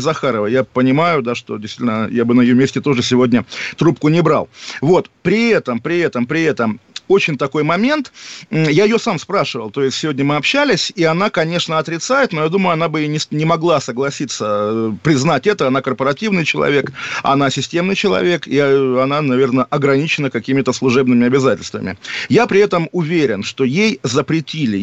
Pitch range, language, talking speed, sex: 130-170 Hz, Russian, 165 wpm, male